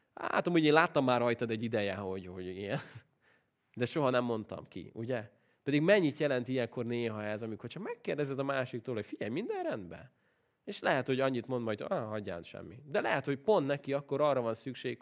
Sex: male